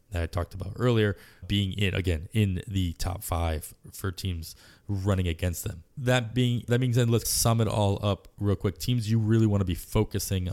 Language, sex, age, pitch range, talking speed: English, male, 20-39, 90-110 Hz, 200 wpm